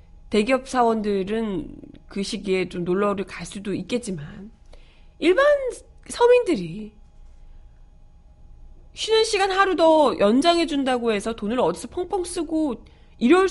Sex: female